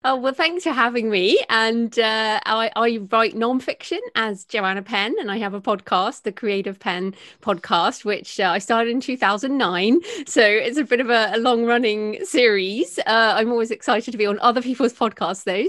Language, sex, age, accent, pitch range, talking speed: English, female, 30-49, British, 195-240 Hz, 195 wpm